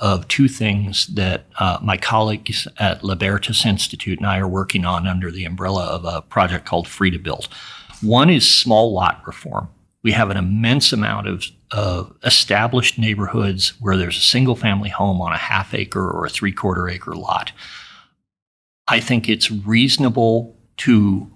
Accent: American